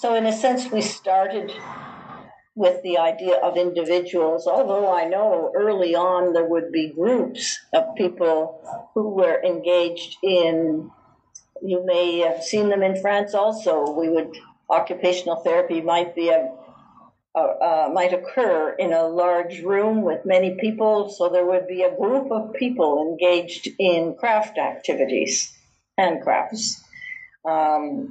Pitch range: 165-200 Hz